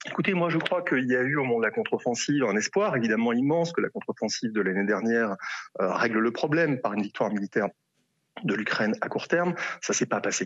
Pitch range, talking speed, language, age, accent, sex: 100-140 Hz, 230 wpm, French, 30-49, French, male